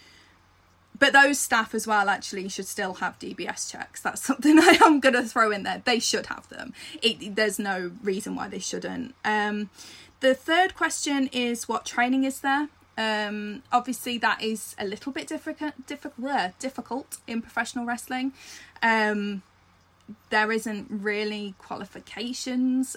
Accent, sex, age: British, female, 20-39